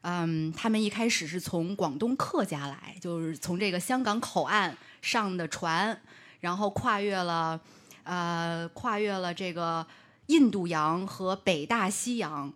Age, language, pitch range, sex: 20-39, Chinese, 170-215 Hz, female